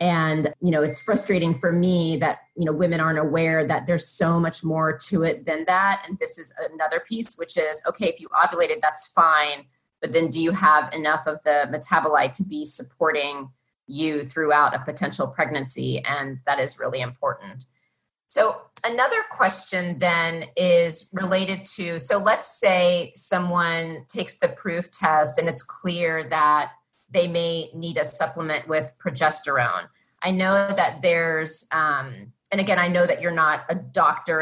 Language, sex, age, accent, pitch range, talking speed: English, female, 30-49, American, 150-175 Hz, 170 wpm